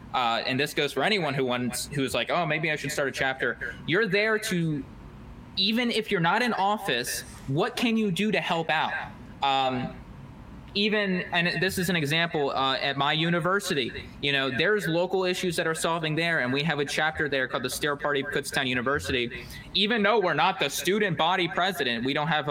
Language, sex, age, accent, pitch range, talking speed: English, male, 20-39, American, 140-175 Hz, 205 wpm